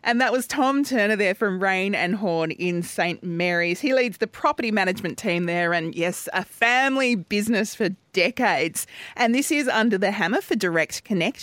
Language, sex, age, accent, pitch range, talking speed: English, female, 30-49, Australian, 185-255 Hz, 190 wpm